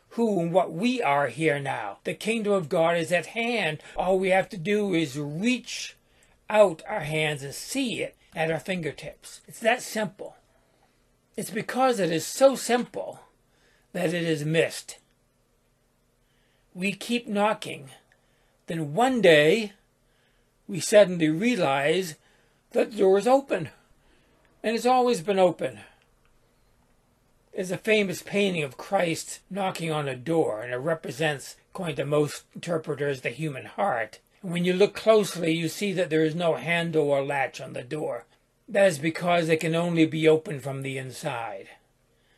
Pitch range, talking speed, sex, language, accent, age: 155-205 Hz, 155 wpm, male, English, American, 60-79